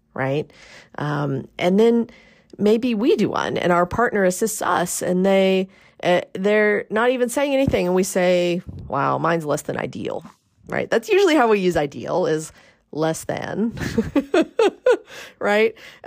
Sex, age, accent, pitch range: female, 40-59, American, 170-250 Hz